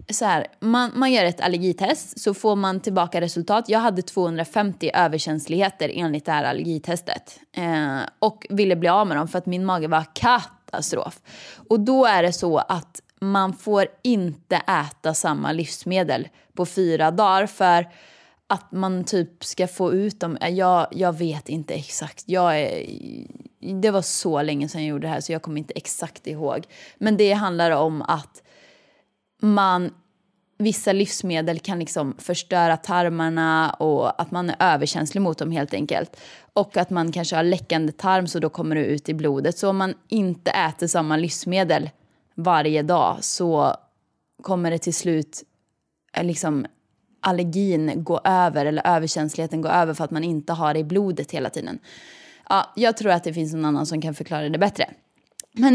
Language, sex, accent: Swedish, female, native